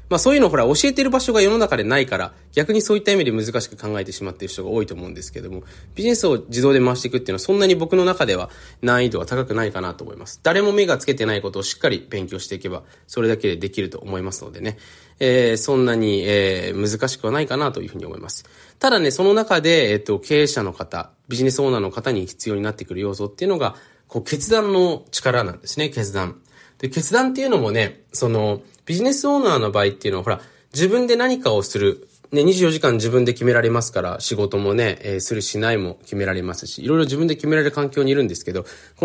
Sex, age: male, 20-39